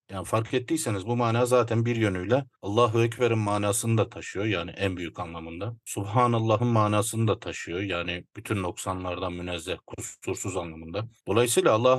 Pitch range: 100-120 Hz